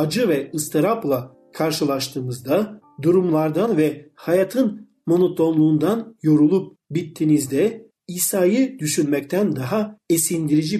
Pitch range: 150-210 Hz